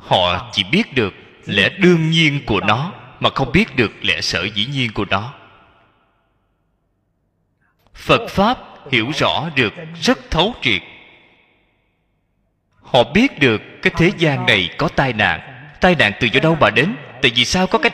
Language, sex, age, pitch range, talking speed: Vietnamese, male, 20-39, 95-155 Hz, 165 wpm